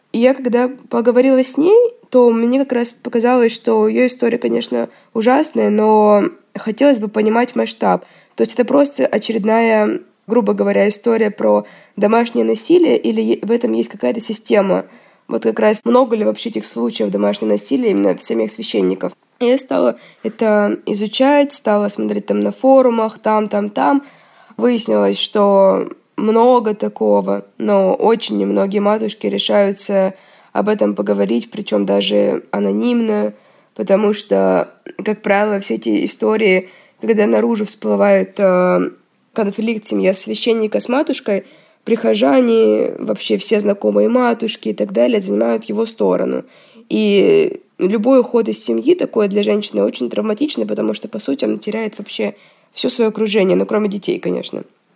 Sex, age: female, 20-39